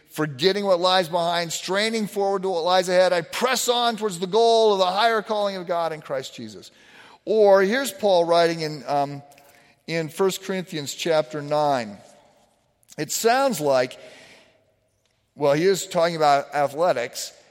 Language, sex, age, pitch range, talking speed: English, male, 50-69, 150-195 Hz, 155 wpm